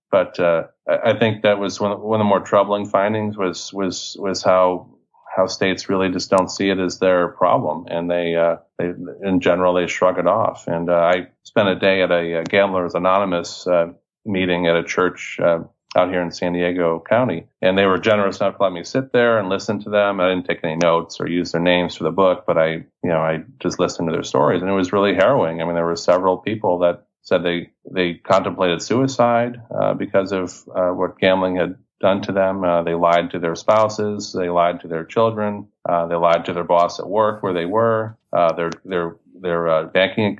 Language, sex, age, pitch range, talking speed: English, male, 30-49, 85-105 Hz, 220 wpm